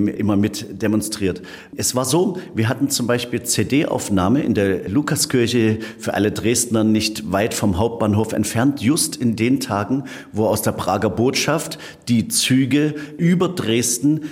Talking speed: 145 wpm